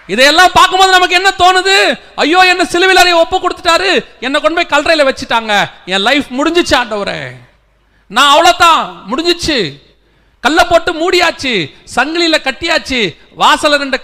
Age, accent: 40-59, native